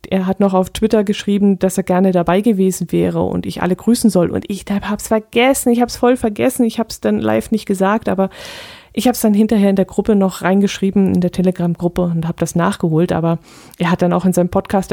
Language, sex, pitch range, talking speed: German, female, 170-215 Hz, 240 wpm